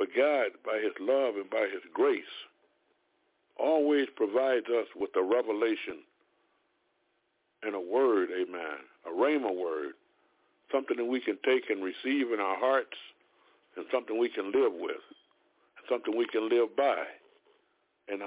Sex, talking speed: male, 145 wpm